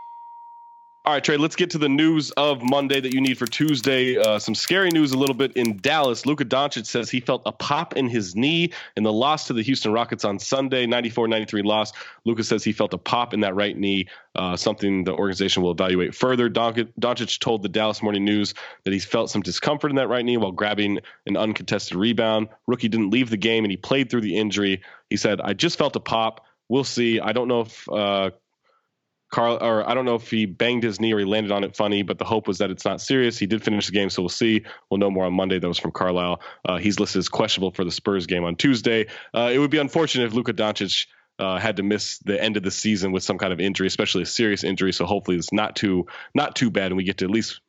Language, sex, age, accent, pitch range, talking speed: English, male, 20-39, American, 100-125 Hz, 250 wpm